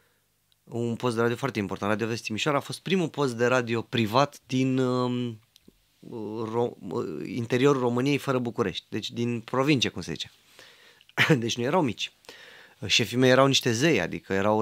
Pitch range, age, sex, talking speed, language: 110-135 Hz, 20-39, male, 155 wpm, Romanian